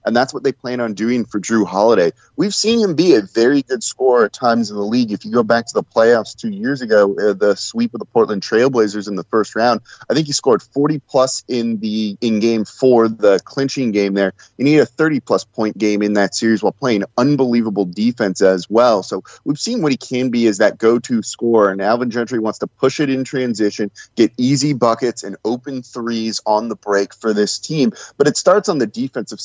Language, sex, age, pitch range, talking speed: English, male, 30-49, 105-130 Hz, 225 wpm